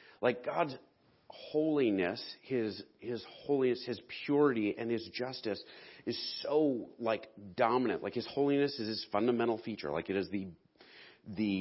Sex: male